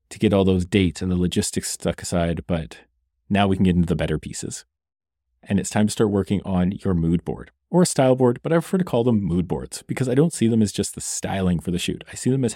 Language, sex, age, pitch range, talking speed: English, male, 30-49, 90-120 Hz, 270 wpm